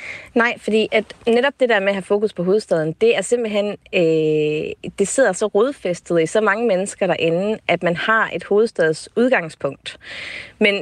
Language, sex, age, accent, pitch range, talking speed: Danish, female, 30-49, native, 165-210 Hz, 175 wpm